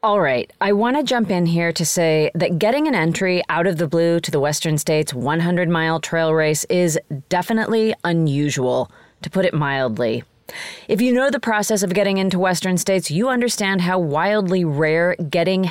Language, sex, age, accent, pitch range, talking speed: English, female, 30-49, American, 160-210 Hz, 185 wpm